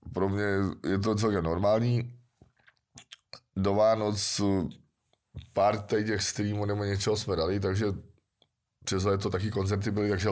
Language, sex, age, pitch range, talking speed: Czech, male, 20-39, 100-120 Hz, 130 wpm